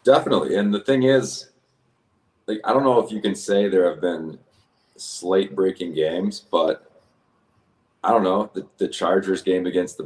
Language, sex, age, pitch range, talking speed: English, male, 30-49, 85-115 Hz, 175 wpm